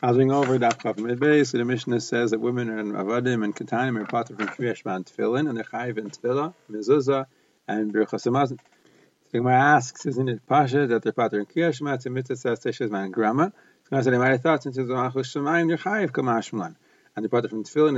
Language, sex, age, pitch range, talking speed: English, male, 40-59, 120-145 Hz, 225 wpm